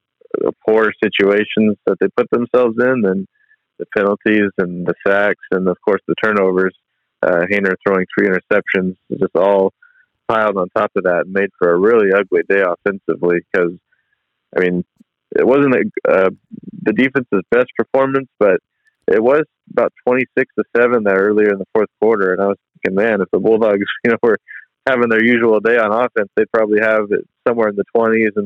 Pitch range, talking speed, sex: 95-110 Hz, 185 wpm, male